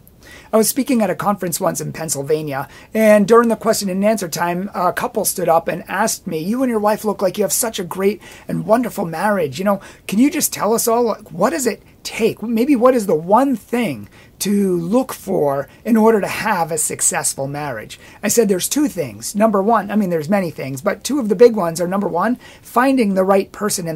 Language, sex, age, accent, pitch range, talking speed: English, male, 40-59, American, 170-225 Hz, 230 wpm